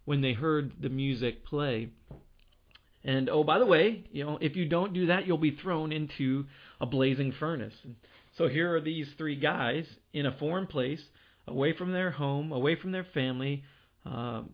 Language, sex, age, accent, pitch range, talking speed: English, male, 40-59, American, 130-165 Hz, 180 wpm